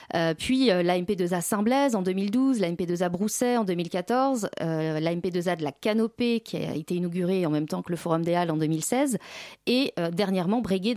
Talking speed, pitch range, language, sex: 185 wpm, 180-235 Hz, French, female